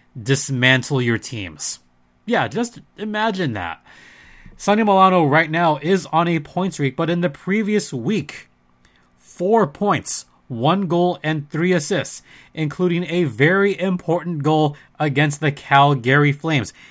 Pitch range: 125-160 Hz